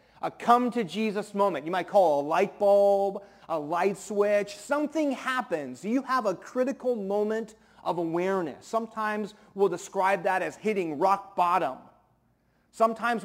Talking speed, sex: 140 wpm, male